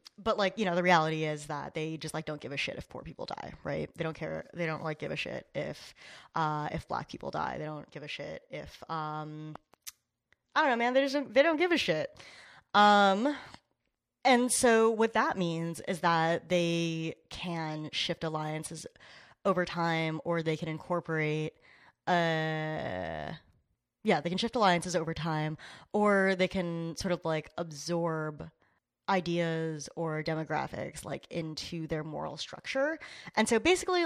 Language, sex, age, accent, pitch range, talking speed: English, female, 10-29, American, 155-195 Hz, 175 wpm